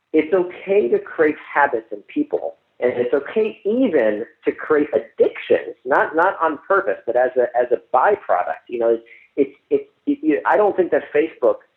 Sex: male